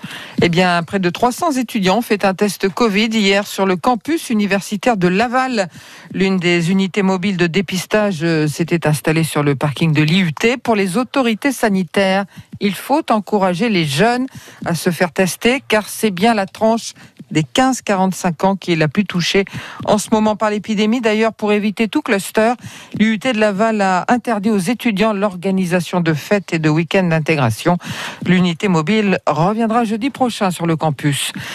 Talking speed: 170 wpm